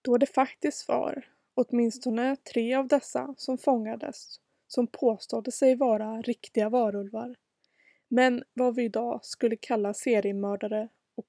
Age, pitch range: 20-39, 220-260 Hz